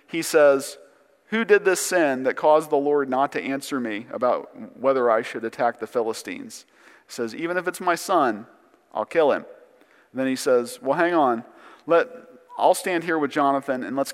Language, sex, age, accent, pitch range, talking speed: English, male, 40-59, American, 130-170 Hz, 190 wpm